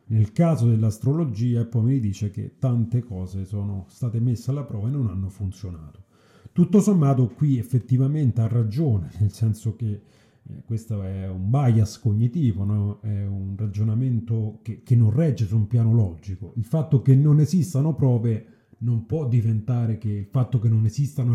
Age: 30-49